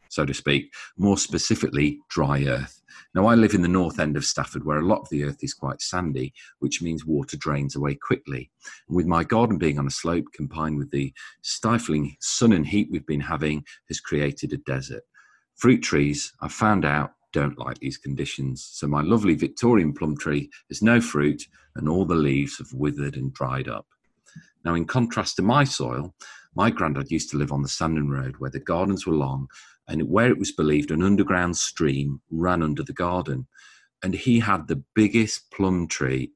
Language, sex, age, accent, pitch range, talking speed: English, male, 40-59, British, 70-95 Hz, 195 wpm